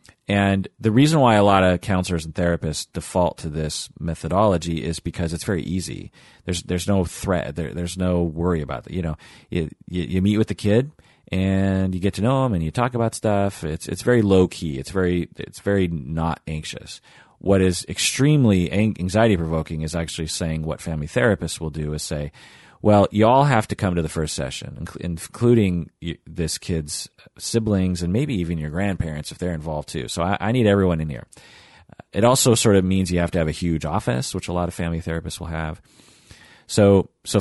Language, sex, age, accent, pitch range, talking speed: English, male, 30-49, American, 80-105 Hz, 200 wpm